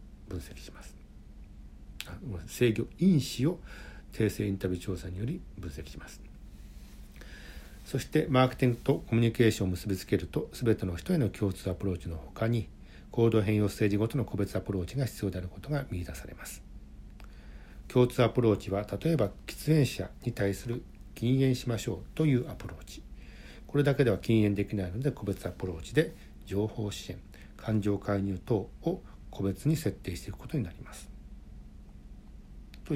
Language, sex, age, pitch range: Japanese, male, 60-79, 95-125 Hz